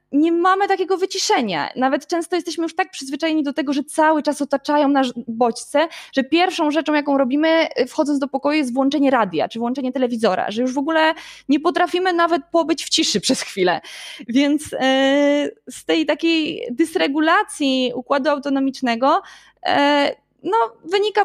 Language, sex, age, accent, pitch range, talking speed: Polish, female, 20-39, native, 250-315 Hz, 150 wpm